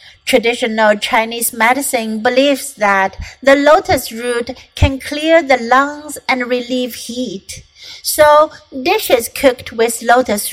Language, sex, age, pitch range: Chinese, female, 60-79, 230-275 Hz